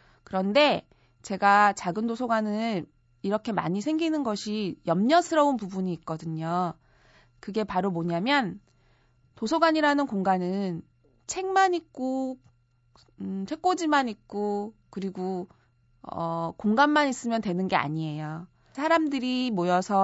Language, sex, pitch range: Korean, female, 180-285 Hz